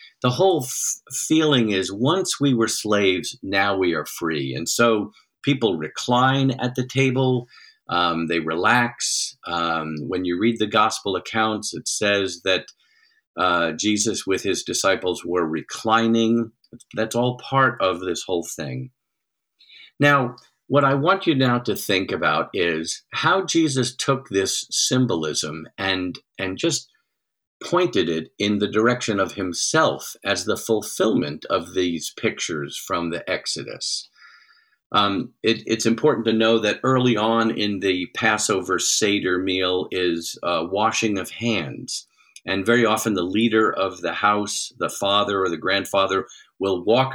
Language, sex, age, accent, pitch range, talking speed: English, male, 50-69, American, 95-125 Hz, 145 wpm